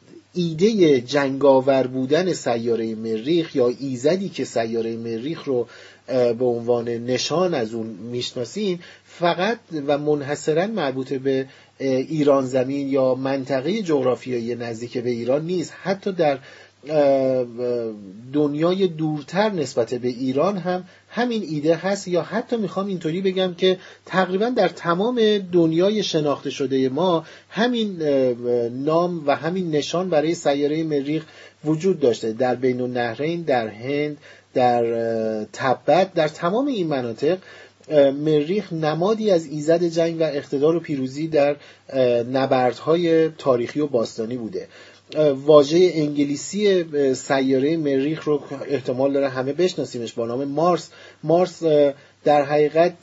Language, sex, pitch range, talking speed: Persian, male, 130-175 Hz, 120 wpm